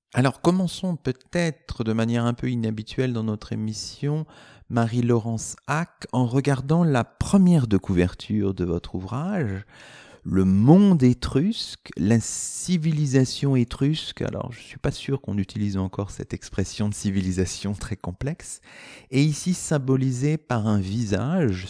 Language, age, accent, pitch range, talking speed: French, 40-59, French, 100-160 Hz, 135 wpm